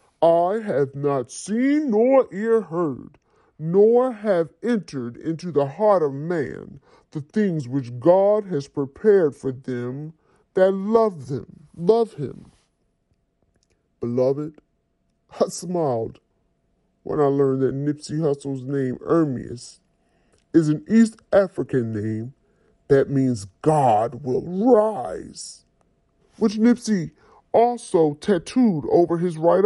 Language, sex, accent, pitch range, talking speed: English, female, American, 140-195 Hz, 115 wpm